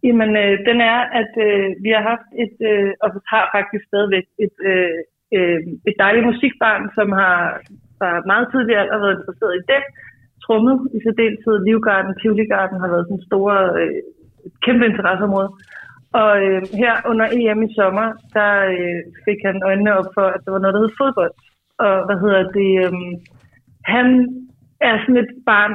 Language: Danish